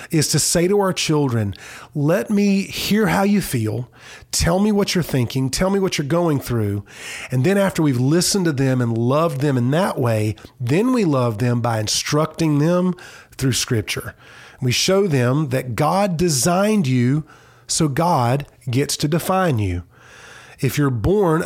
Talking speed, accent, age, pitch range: 170 wpm, American, 40-59, 130-165 Hz